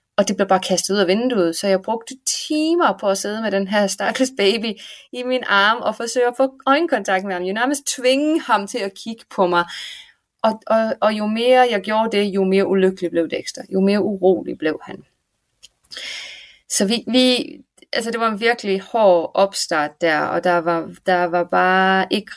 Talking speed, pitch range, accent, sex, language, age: 200 wpm, 185-230 Hz, native, female, Danish, 20-39